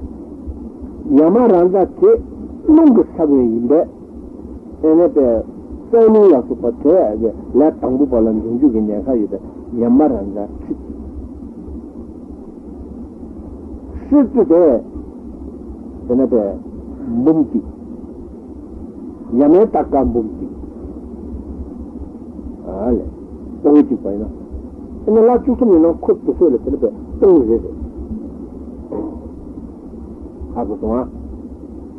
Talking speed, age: 75 wpm, 60-79